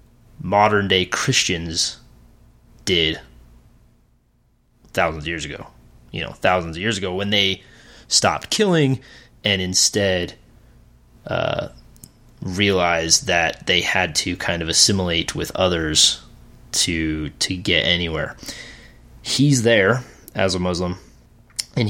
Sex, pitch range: male, 85-110 Hz